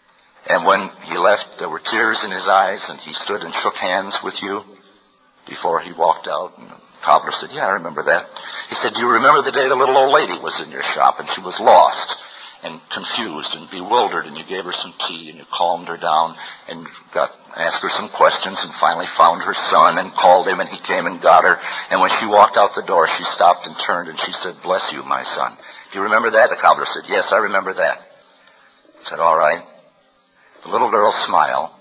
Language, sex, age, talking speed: English, male, 60-79, 225 wpm